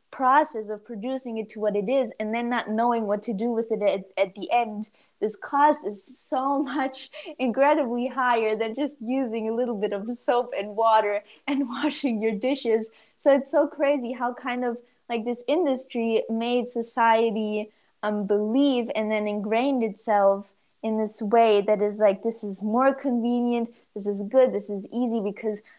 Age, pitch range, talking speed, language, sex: 20-39, 210-245 Hz, 180 wpm, English, female